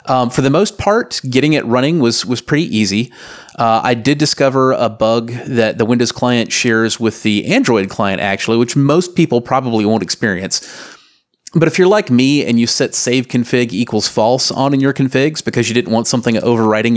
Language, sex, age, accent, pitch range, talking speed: English, male, 30-49, American, 110-130 Hz, 200 wpm